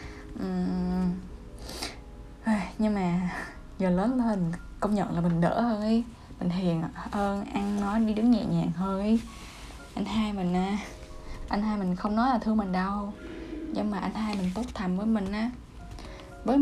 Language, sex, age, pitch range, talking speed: Vietnamese, female, 10-29, 185-235 Hz, 170 wpm